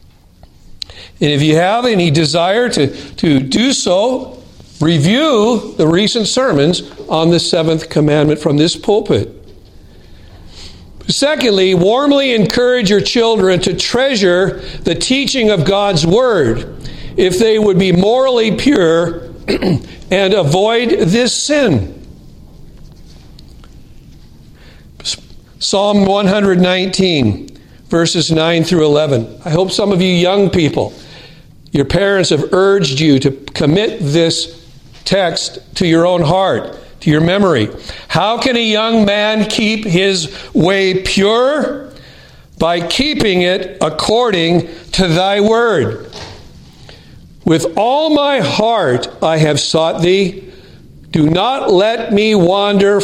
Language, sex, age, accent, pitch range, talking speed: English, male, 50-69, American, 150-210 Hz, 115 wpm